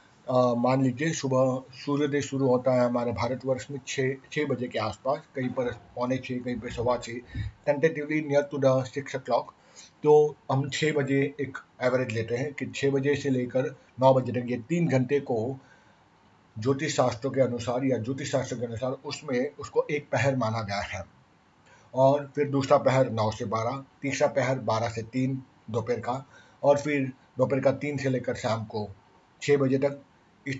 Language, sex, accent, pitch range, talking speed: Hindi, male, native, 120-140 Hz, 185 wpm